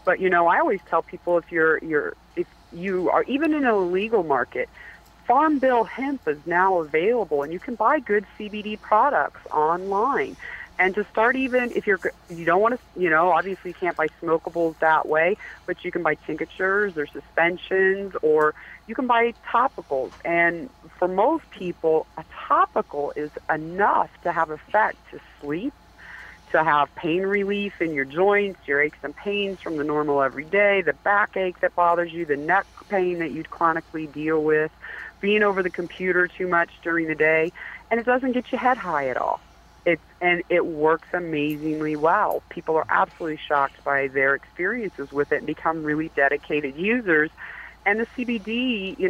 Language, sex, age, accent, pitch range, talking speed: English, female, 40-59, American, 155-200 Hz, 180 wpm